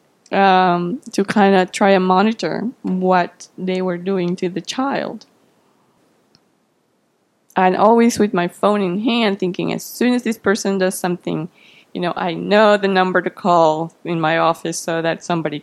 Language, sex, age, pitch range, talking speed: English, female, 20-39, 185-255 Hz, 165 wpm